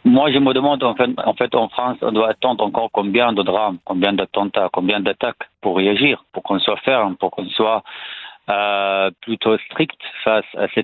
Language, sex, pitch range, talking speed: French, male, 100-120 Hz, 190 wpm